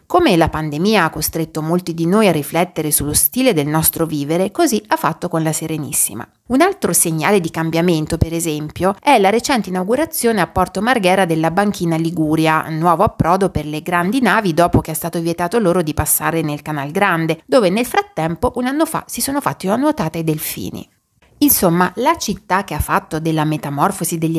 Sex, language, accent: female, Italian, native